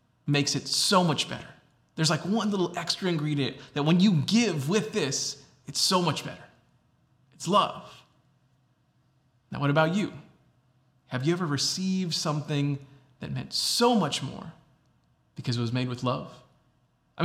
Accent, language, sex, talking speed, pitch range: American, English, male, 155 wpm, 135-180 Hz